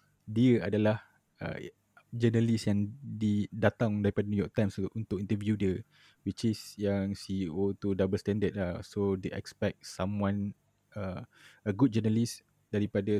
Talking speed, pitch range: 125 wpm, 100-110 Hz